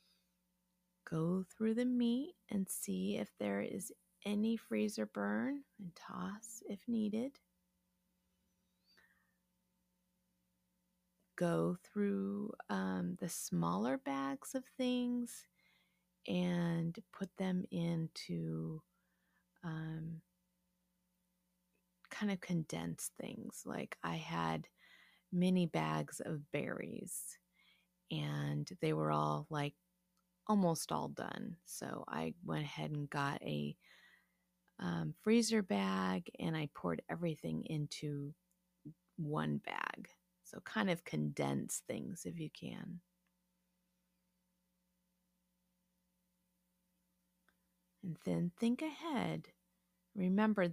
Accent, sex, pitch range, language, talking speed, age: American, female, 140-195 Hz, English, 90 wpm, 30-49